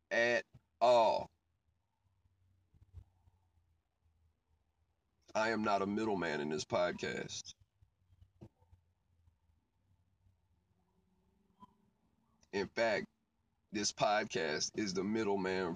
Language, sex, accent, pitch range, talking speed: English, male, American, 90-130 Hz, 65 wpm